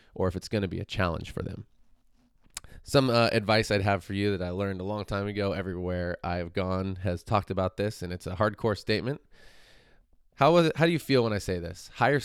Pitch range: 90-110 Hz